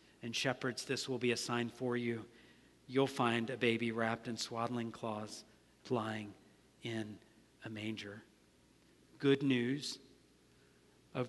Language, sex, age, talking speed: English, male, 50-69, 130 wpm